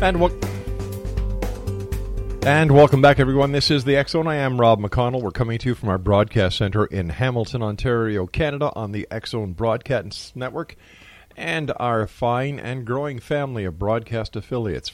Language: English